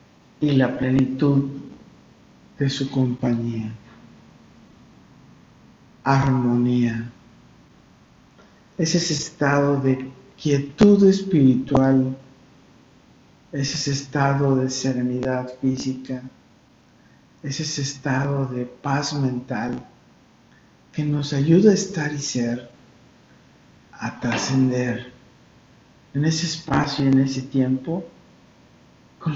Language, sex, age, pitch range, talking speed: Spanish, male, 50-69, 130-150 Hz, 85 wpm